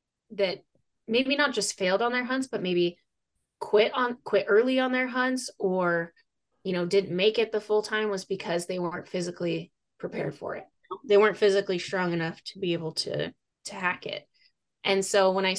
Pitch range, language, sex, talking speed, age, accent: 170-215 Hz, English, female, 195 wpm, 20-39, American